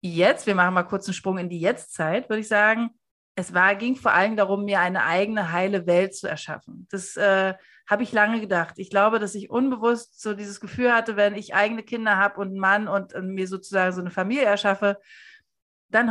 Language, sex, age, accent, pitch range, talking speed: German, female, 40-59, German, 195-230 Hz, 215 wpm